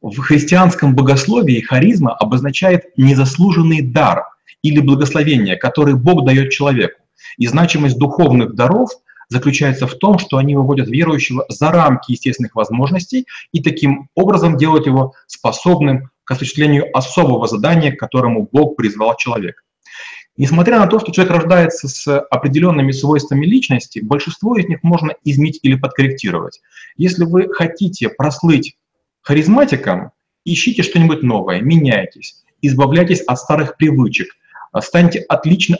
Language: Russian